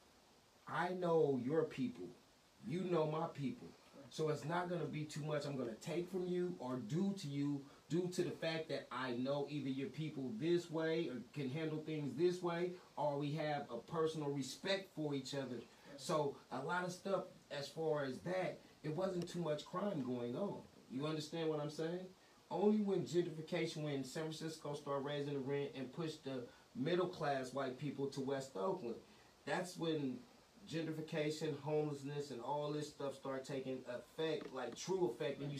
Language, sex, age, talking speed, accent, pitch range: English, male, 30-49, 180 wpm, American, 140-180 Hz